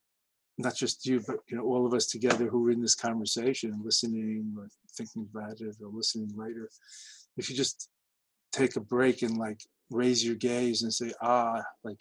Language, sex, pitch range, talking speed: English, male, 115-125 Hz, 190 wpm